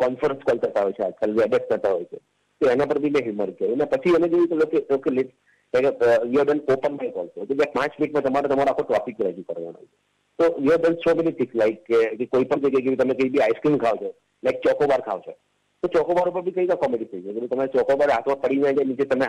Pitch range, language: 130-175 Hz, Gujarati